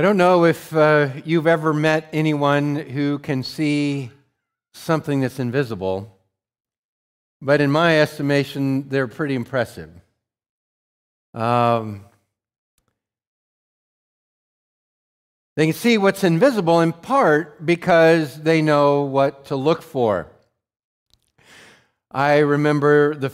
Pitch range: 125-165 Hz